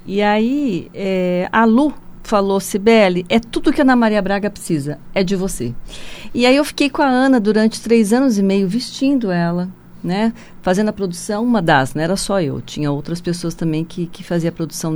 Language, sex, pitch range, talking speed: Portuguese, female, 165-215 Hz, 210 wpm